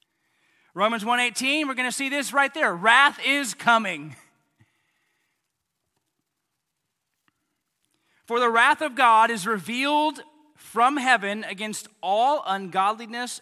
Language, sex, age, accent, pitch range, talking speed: English, male, 30-49, American, 165-235 Hz, 110 wpm